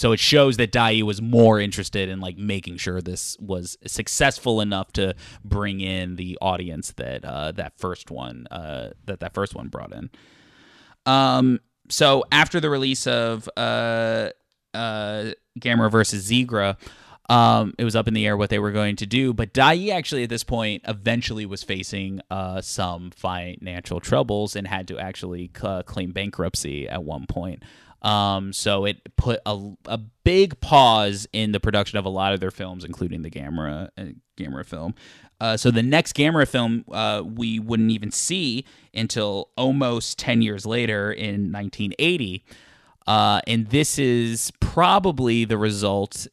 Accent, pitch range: American, 95-115 Hz